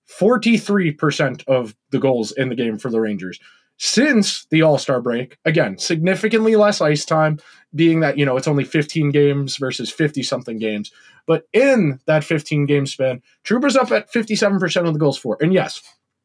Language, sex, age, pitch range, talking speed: English, male, 20-39, 130-180 Hz, 165 wpm